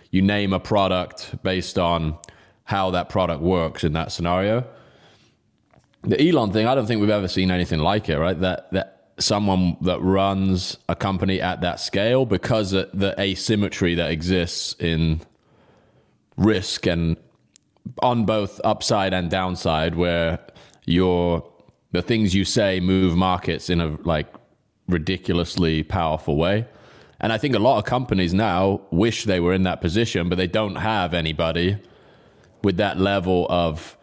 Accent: British